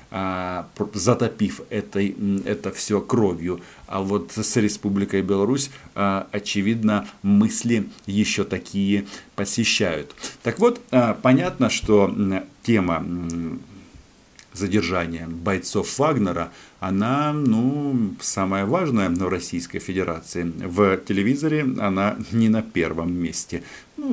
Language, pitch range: Russian, 90-110 Hz